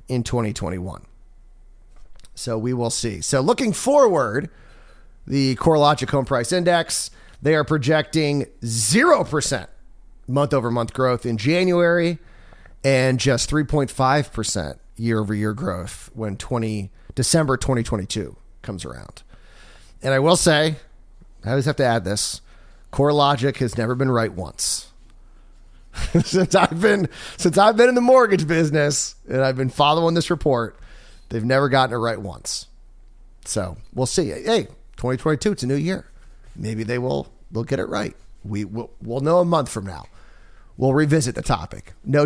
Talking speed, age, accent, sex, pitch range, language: 140 wpm, 30-49, American, male, 110-150 Hz, English